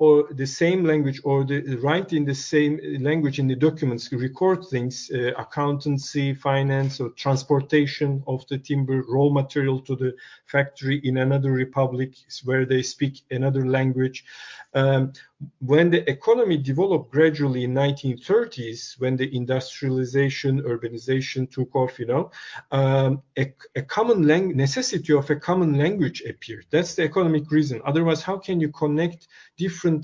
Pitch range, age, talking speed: 130-160 Hz, 50-69, 150 wpm